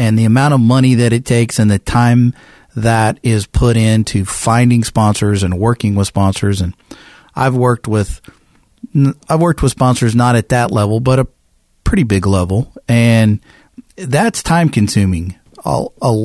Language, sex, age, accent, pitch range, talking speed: English, male, 40-59, American, 100-125 Hz, 160 wpm